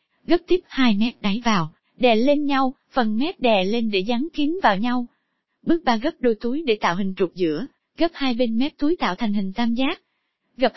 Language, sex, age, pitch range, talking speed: Vietnamese, female, 20-39, 220-300 Hz, 215 wpm